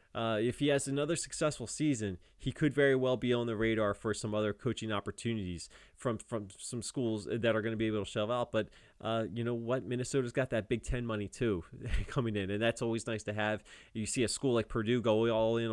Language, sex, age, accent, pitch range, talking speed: English, male, 20-39, American, 110-130 Hz, 235 wpm